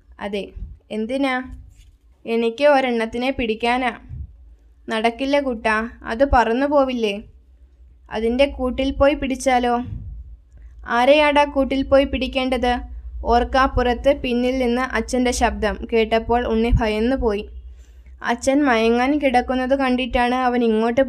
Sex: female